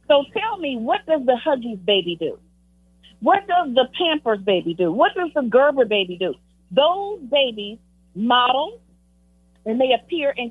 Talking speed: 160 wpm